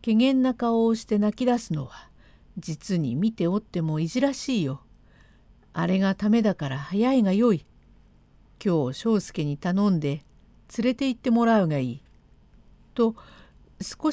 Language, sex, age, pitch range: Japanese, female, 50-69, 210-265 Hz